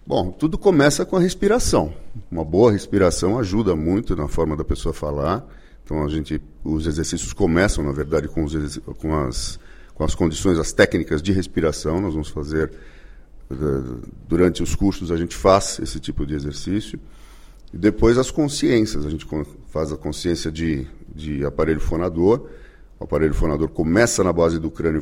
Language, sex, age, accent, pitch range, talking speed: Portuguese, male, 50-69, Brazilian, 75-100 Hz, 165 wpm